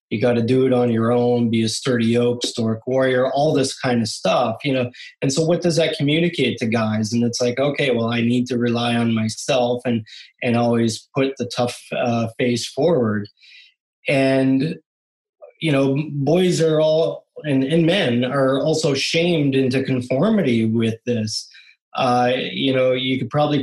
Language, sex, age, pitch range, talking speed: English, male, 20-39, 120-140 Hz, 180 wpm